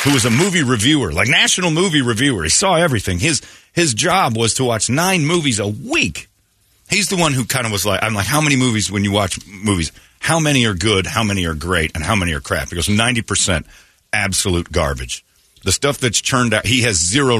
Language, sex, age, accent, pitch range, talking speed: English, male, 40-59, American, 85-115 Hz, 225 wpm